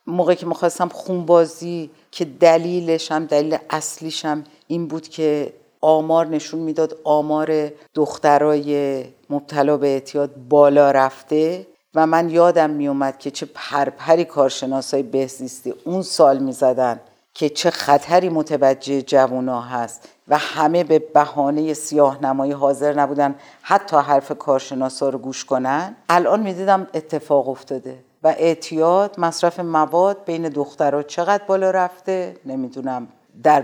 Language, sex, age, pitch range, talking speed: Persian, female, 50-69, 145-175 Hz, 125 wpm